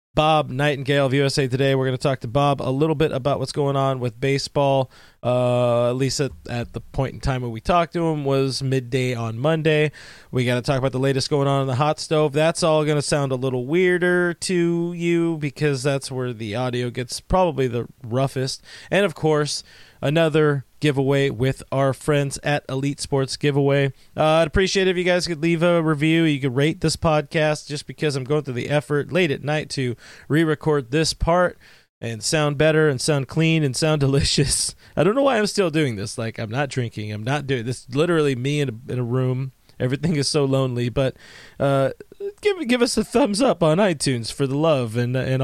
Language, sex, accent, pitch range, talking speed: English, male, American, 130-155 Hz, 215 wpm